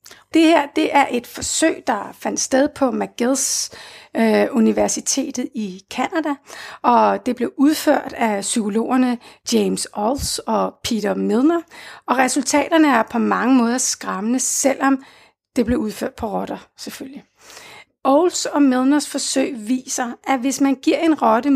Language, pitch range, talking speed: Danish, 235-290 Hz, 140 wpm